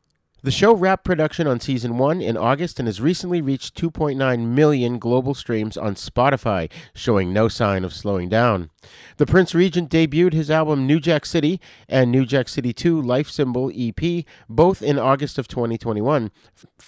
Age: 40-59